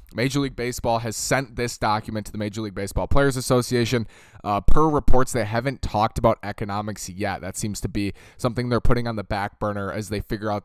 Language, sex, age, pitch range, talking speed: English, male, 20-39, 105-125 Hz, 215 wpm